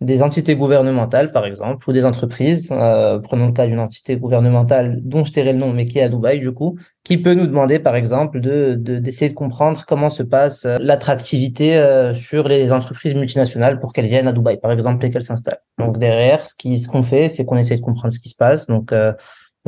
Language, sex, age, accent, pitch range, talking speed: French, male, 20-39, French, 120-150 Hz, 230 wpm